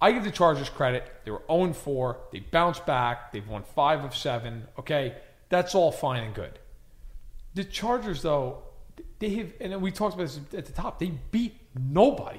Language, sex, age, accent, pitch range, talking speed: English, male, 40-59, American, 125-180 Hz, 185 wpm